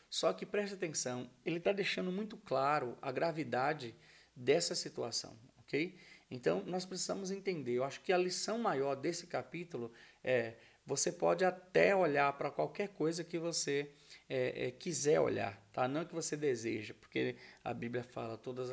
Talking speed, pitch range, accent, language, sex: 165 wpm, 125-170 Hz, Brazilian, Portuguese, male